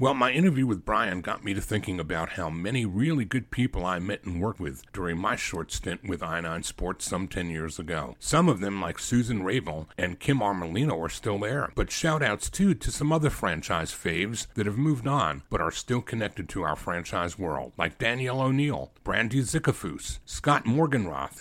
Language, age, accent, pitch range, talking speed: English, 60-79, American, 90-125 Hz, 195 wpm